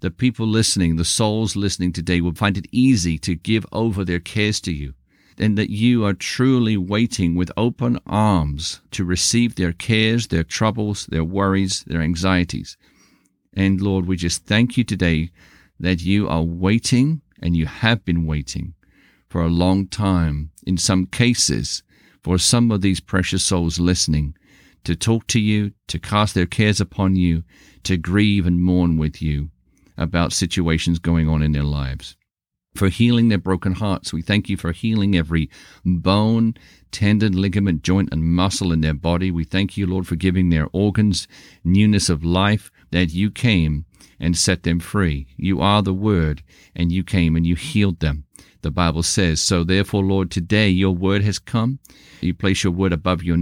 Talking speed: 175 wpm